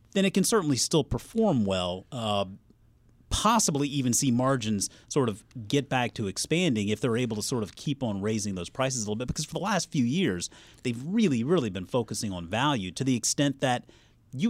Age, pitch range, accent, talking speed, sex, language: 30-49, 105-130 Hz, American, 205 wpm, male, English